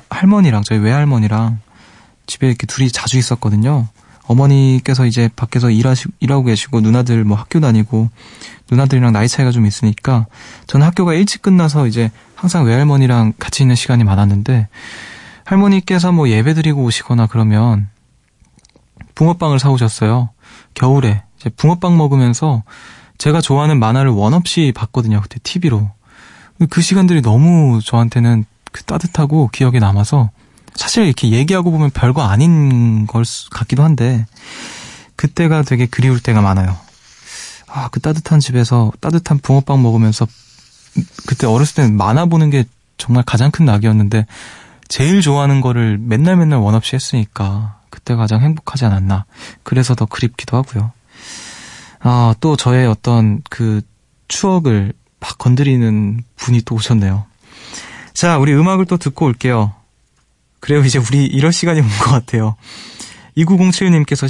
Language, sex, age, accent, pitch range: Korean, male, 20-39, native, 110-145 Hz